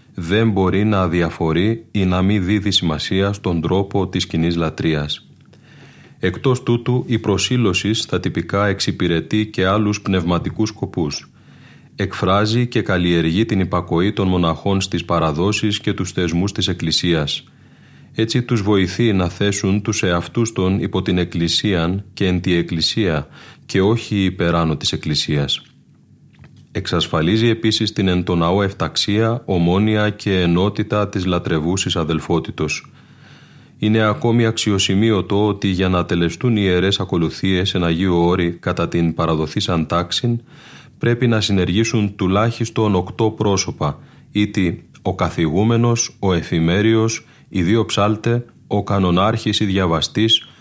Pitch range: 85-110 Hz